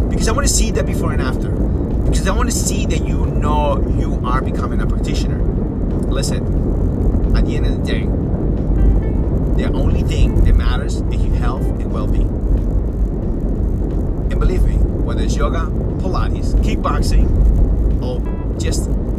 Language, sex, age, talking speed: English, male, 30-49, 145 wpm